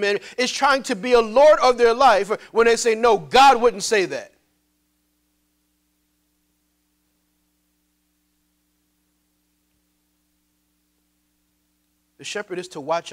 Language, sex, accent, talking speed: English, male, American, 105 wpm